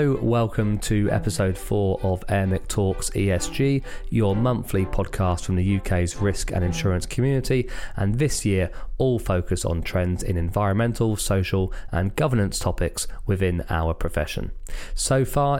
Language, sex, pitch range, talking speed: English, male, 95-120 Hz, 140 wpm